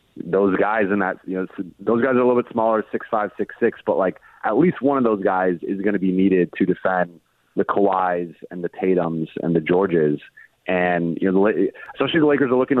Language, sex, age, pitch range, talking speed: English, male, 30-49, 90-110 Hz, 225 wpm